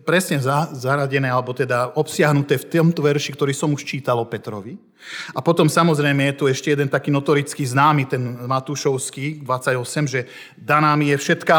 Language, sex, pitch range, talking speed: Slovak, male, 135-170 Hz, 165 wpm